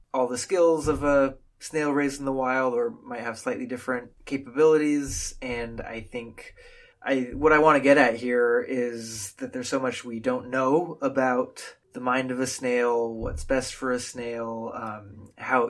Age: 20-39